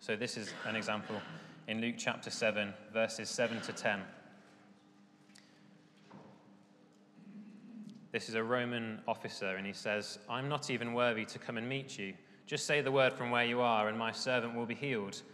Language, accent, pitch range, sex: English, British, 105-135 Hz, male